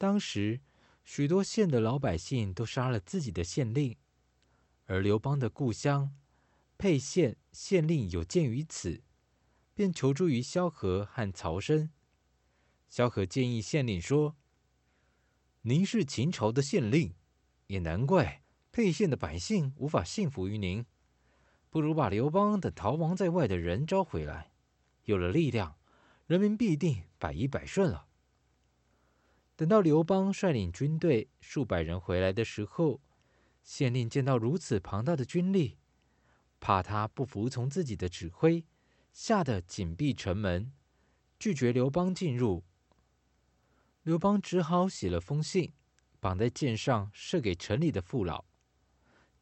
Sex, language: male, Chinese